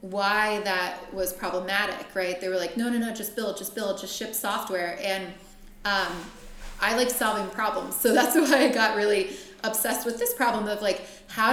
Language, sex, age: Swedish, female, 20-39